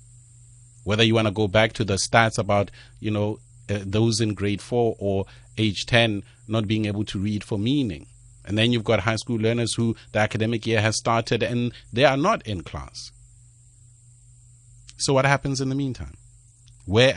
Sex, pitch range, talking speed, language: male, 100-120 Hz, 185 wpm, English